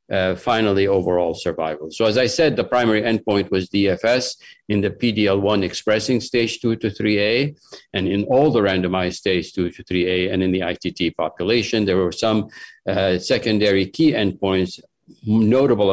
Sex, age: male, 50-69